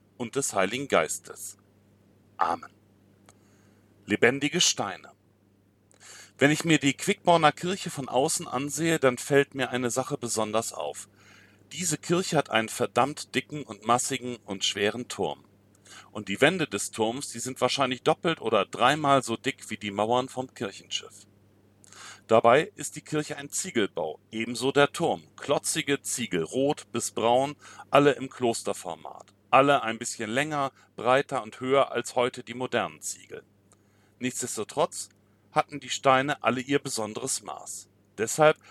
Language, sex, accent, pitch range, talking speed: German, male, German, 105-145 Hz, 140 wpm